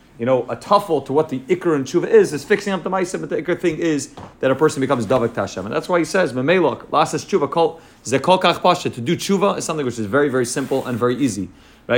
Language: English